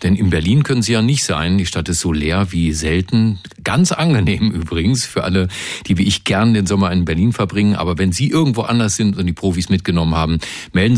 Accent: German